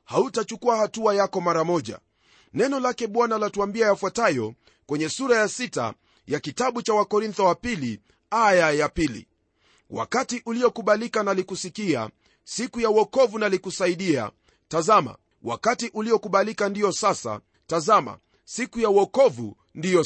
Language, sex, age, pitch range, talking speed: Swahili, male, 40-59, 185-235 Hz, 125 wpm